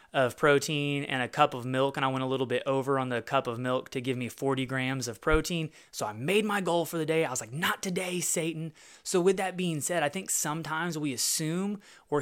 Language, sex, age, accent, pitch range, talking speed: English, male, 20-39, American, 130-160 Hz, 250 wpm